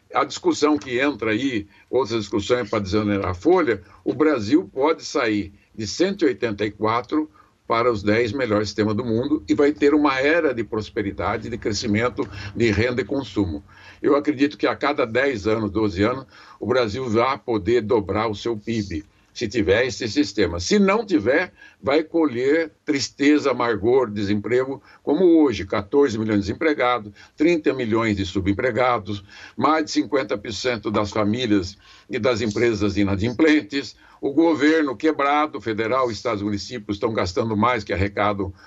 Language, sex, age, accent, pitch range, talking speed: Portuguese, male, 60-79, Brazilian, 105-155 Hz, 150 wpm